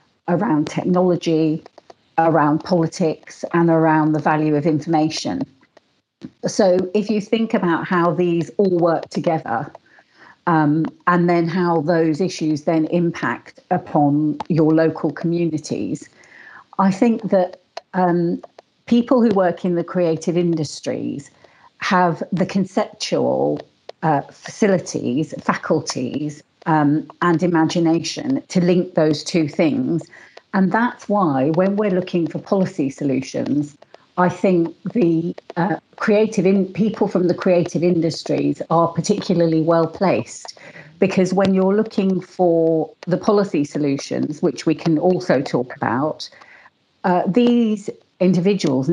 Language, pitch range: Finnish, 160-190 Hz